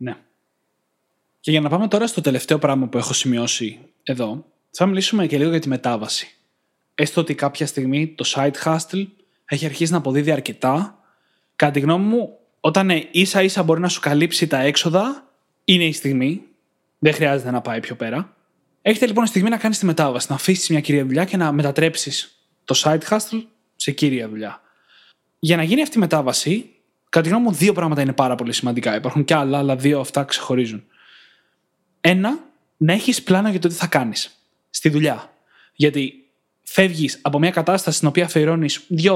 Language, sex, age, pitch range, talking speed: Greek, male, 20-39, 140-185 Hz, 180 wpm